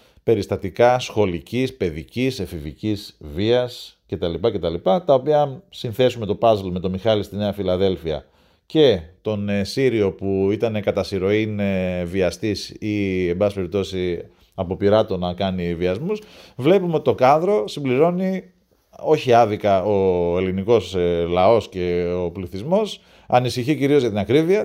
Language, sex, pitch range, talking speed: Greek, male, 95-130 Hz, 130 wpm